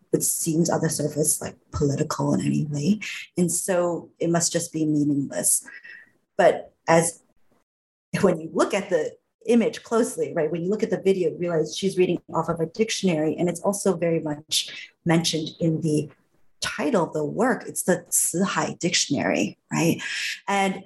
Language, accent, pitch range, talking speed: English, American, 160-205 Hz, 170 wpm